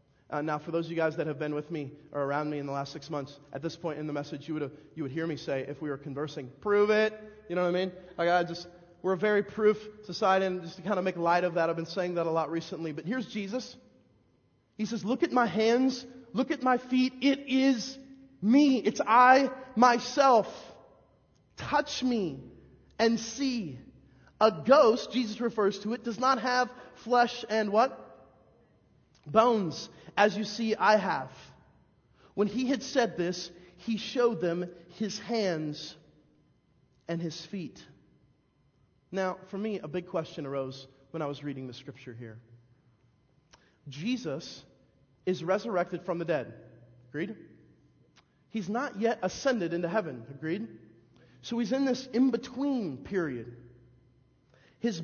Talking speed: 170 wpm